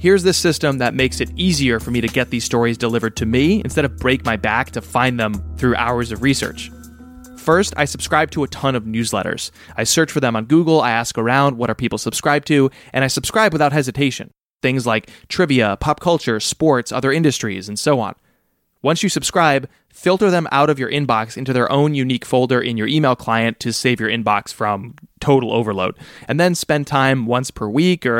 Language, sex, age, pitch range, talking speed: English, male, 20-39, 120-150 Hz, 210 wpm